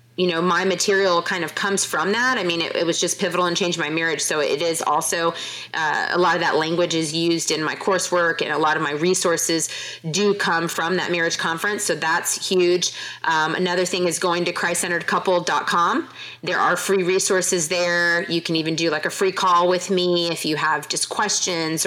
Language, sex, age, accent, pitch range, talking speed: English, female, 30-49, American, 170-195 Hz, 210 wpm